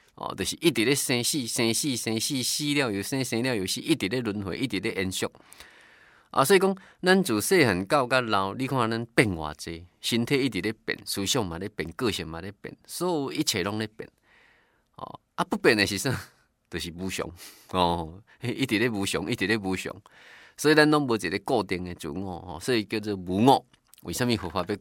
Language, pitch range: Chinese, 95-135 Hz